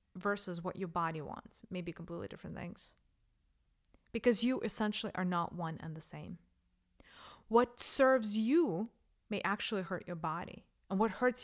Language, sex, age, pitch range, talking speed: English, female, 20-39, 170-230 Hz, 150 wpm